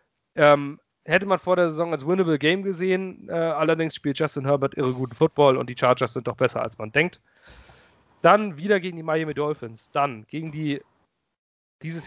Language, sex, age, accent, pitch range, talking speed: German, male, 30-49, German, 130-170 Hz, 185 wpm